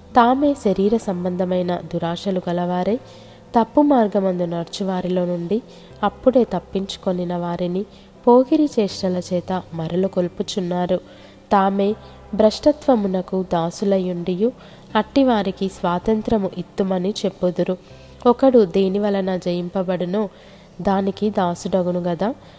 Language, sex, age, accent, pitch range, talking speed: Telugu, female, 20-39, native, 180-215 Hz, 75 wpm